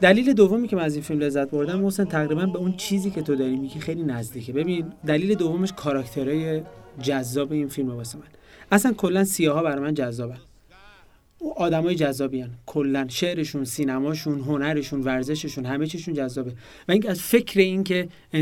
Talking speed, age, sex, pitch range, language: 165 wpm, 30-49, male, 130-165 Hz, Persian